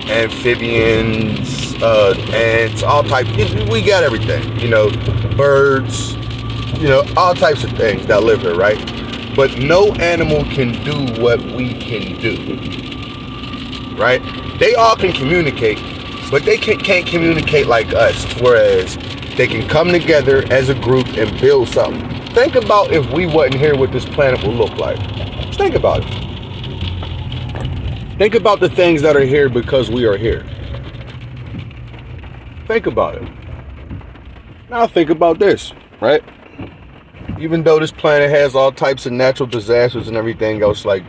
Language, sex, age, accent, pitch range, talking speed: English, male, 30-49, American, 115-145 Hz, 145 wpm